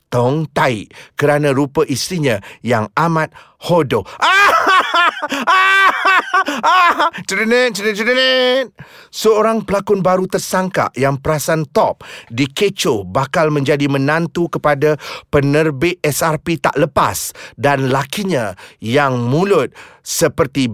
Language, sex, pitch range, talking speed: Malay, male, 140-195 Hz, 85 wpm